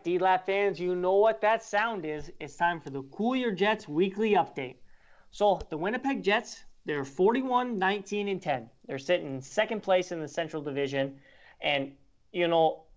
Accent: American